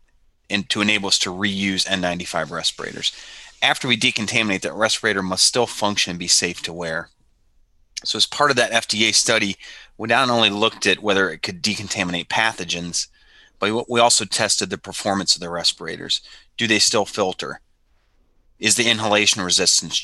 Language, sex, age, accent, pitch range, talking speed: English, male, 30-49, American, 90-115 Hz, 165 wpm